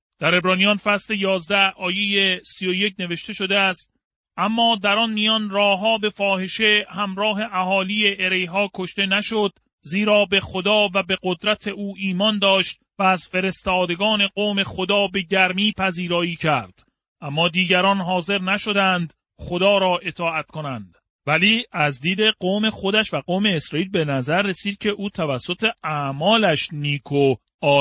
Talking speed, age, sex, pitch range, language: 140 wpm, 40-59, male, 160-205 Hz, Persian